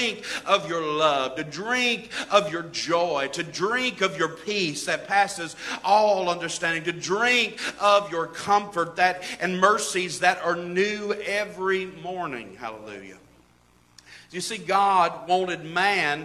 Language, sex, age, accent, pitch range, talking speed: English, male, 40-59, American, 170-205 Hz, 135 wpm